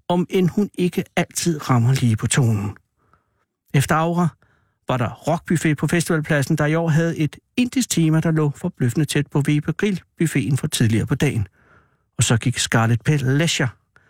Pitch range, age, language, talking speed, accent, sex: 135-165 Hz, 60-79, Danish, 165 wpm, native, male